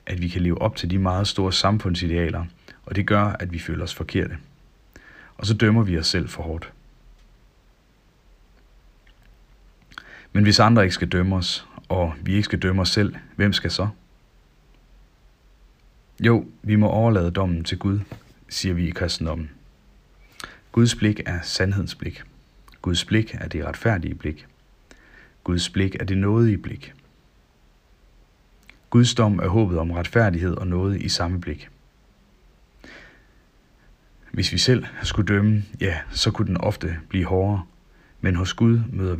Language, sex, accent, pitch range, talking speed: Danish, male, native, 85-105 Hz, 150 wpm